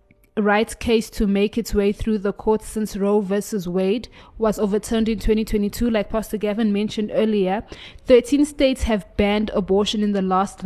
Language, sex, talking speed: English, female, 170 wpm